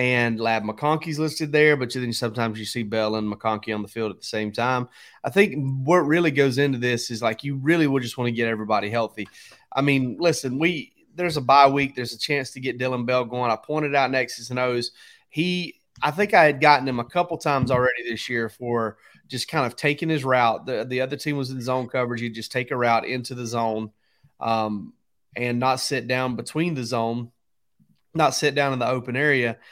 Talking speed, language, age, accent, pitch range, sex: 220 wpm, English, 30-49, American, 120-140 Hz, male